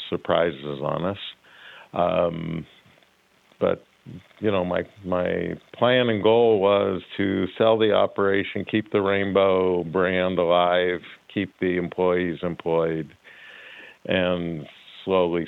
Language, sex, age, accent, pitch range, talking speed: English, male, 50-69, American, 90-105 Hz, 110 wpm